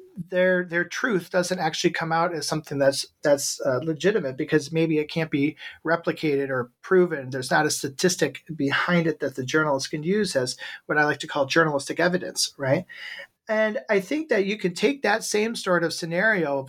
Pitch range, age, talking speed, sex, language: 150-185 Hz, 40-59, 195 wpm, male, English